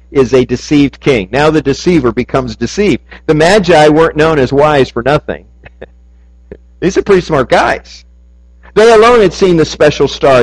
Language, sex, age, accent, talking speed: English, male, 50-69, American, 165 wpm